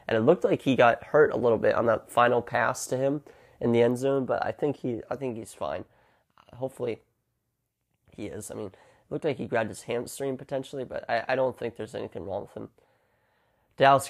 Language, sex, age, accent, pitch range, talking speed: English, male, 30-49, American, 110-125 Hz, 220 wpm